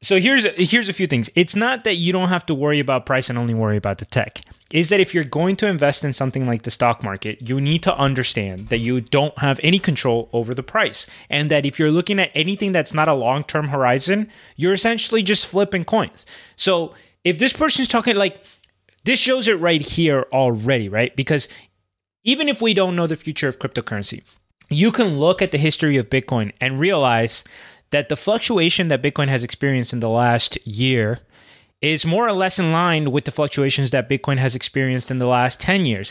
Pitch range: 130-185 Hz